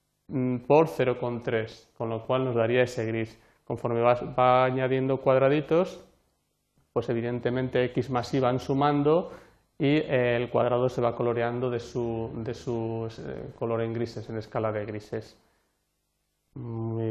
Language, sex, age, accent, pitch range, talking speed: Spanish, male, 30-49, Spanish, 120-130 Hz, 125 wpm